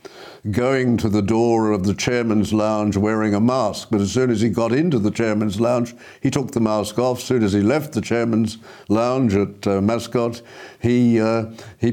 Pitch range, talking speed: 105-125 Hz, 195 wpm